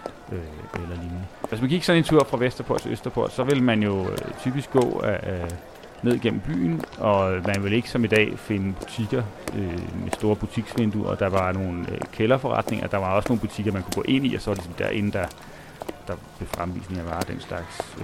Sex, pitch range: male, 95-115 Hz